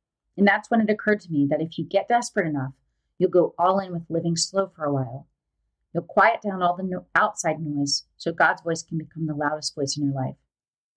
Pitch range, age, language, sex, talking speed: 155-195 Hz, 40-59, English, female, 225 wpm